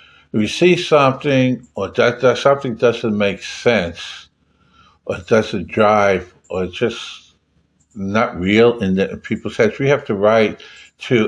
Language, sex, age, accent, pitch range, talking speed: English, male, 60-79, American, 95-120 Hz, 145 wpm